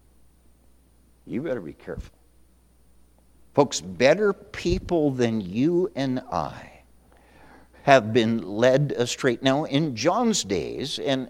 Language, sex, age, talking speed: English, male, 60-79, 105 wpm